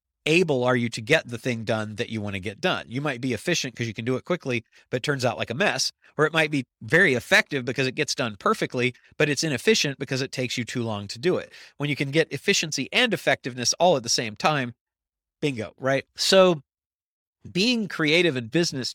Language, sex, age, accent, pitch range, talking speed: English, male, 40-59, American, 125-170 Hz, 230 wpm